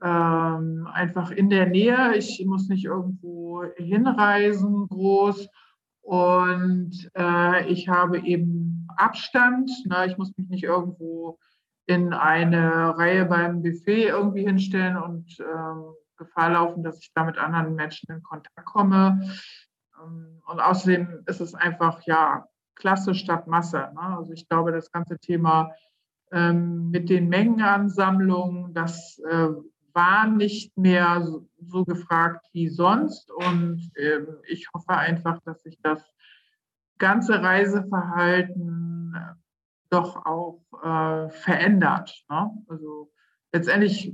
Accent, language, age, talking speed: German, German, 50-69, 115 wpm